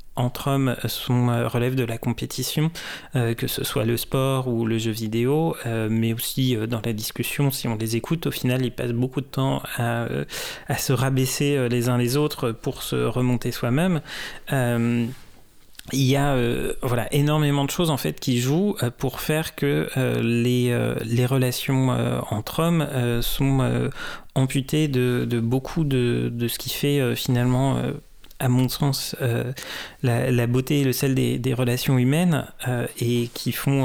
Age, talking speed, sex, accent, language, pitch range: 40-59, 175 wpm, male, French, French, 120-140 Hz